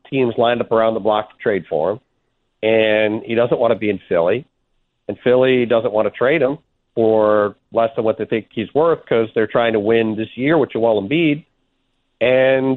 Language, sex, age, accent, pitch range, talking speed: English, male, 40-59, American, 110-125 Hz, 205 wpm